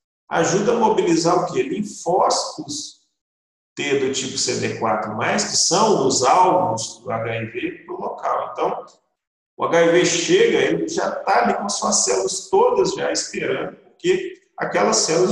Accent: Brazilian